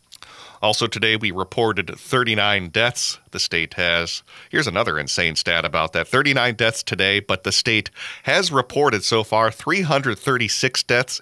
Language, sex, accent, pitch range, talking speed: English, male, American, 95-120 Hz, 145 wpm